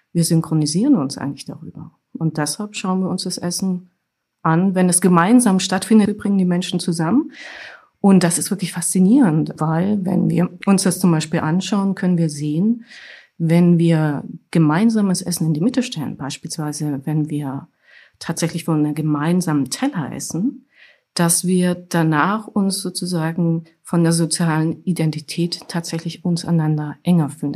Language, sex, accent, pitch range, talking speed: German, female, German, 160-190 Hz, 150 wpm